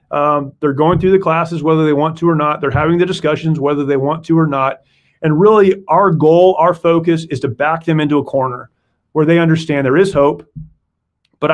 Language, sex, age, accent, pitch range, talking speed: English, male, 30-49, American, 140-175 Hz, 220 wpm